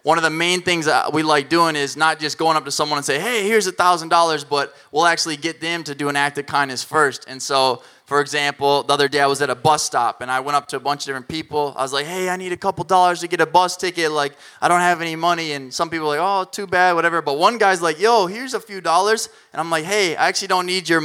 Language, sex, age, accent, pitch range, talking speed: English, male, 20-39, American, 140-170 Hz, 290 wpm